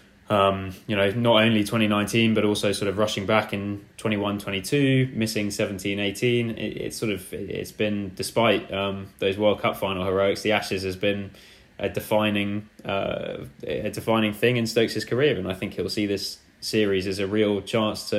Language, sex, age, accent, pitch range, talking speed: English, male, 20-39, British, 95-105 Hz, 190 wpm